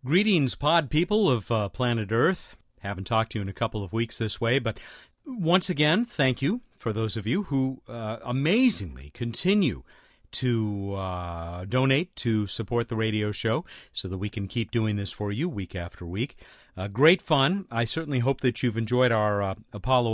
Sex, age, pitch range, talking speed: male, 50-69, 105-155 Hz, 190 wpm